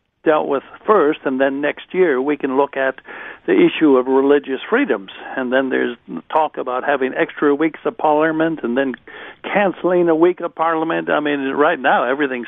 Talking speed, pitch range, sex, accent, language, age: 185 wpm, 130-155 Hz, male, American, English, 60-79